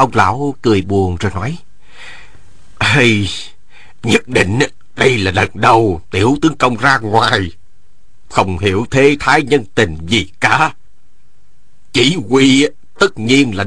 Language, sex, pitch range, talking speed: Vietnamese, male, 90-145 Hz, 135 wpm